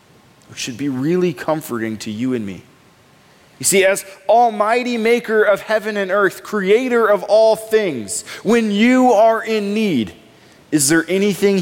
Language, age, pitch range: English, 20-39, 140-215 Hz